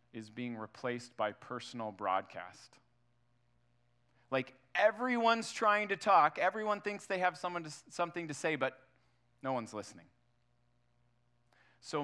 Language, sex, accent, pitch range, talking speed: English, male, American, 120-145 Hz, 115 wpm